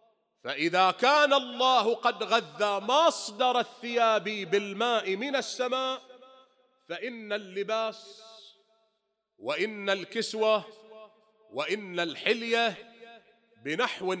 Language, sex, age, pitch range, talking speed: English, male, 40-59, 180-235 Hz, 70 wpm